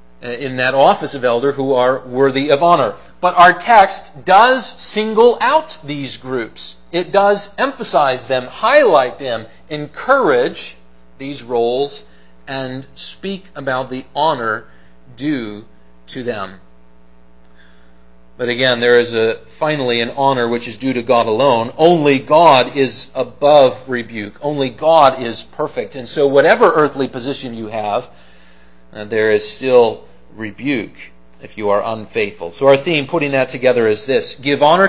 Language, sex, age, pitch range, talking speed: English, male, 40-59, 100-140 Hz, 145 wpm